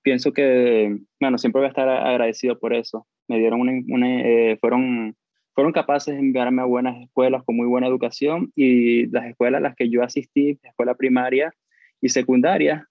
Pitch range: 120-140 Hz